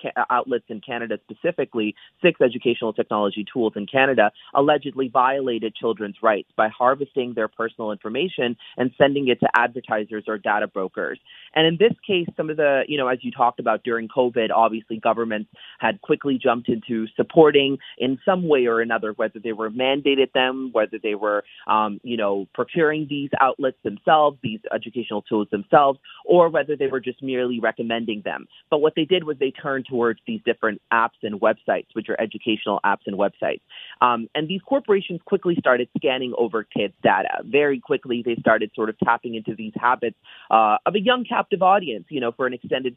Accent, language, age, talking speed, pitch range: American, English, 30-49, 185 wpm, 110-140 Hz